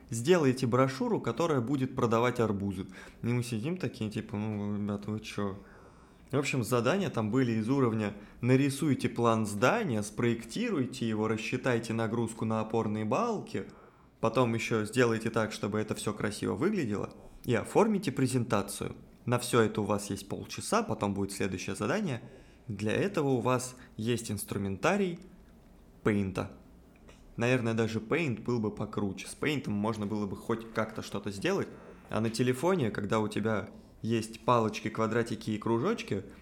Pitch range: 105-125 Hz